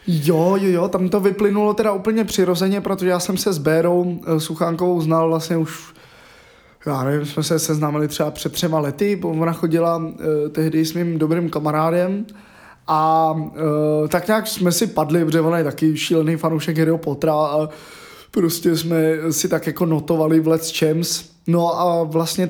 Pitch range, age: 160-185 Hz, 20-39